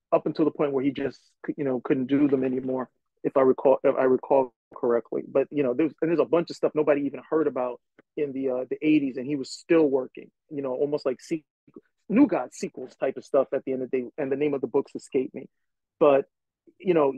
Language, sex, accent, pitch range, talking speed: English, male, American, 140-210 Hz, 250 wpm